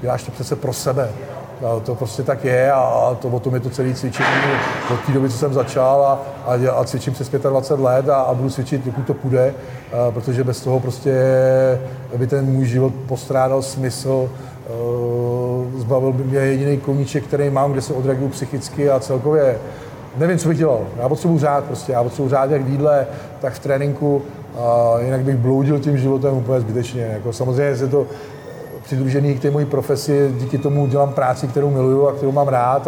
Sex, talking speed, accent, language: male, 190 wpm, native, Czech